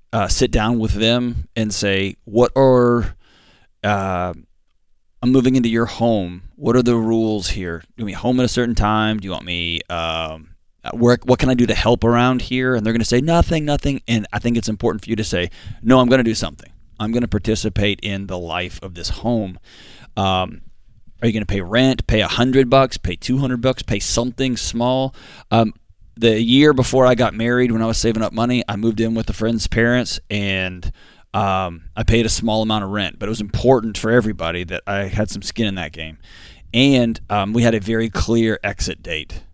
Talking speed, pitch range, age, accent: 220 wpm, 95-120 Hz, 20-39, American